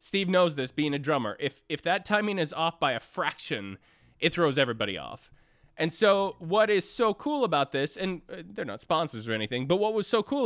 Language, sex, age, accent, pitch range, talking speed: English, male, 20-39, American, 140-205 Hz, 220 wpm